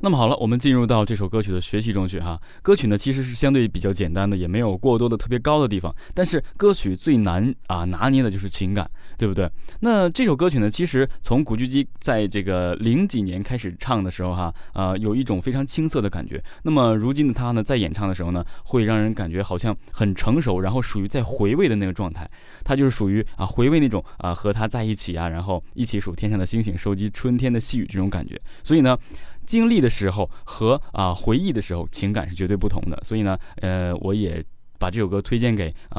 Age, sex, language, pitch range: 20-39, male, Chinese, 95-120 Hz